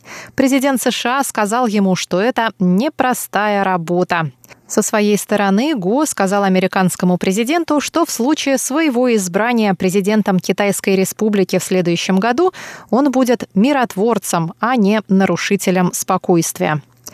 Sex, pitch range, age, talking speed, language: female, 190-250 Hz, 20-39, 115 wpm, Russian